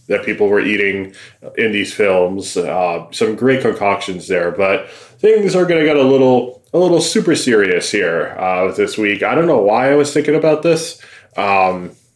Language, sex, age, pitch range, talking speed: English, male, 20-39, 100-135 Hz, 190 wpm